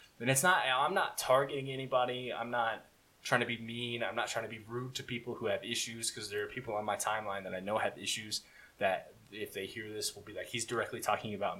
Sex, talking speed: male, 250 wpm